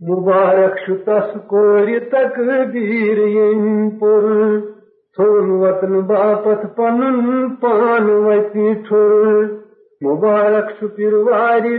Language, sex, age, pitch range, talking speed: Urdu, male, 50-69, 210-235 Hz, 75 wpm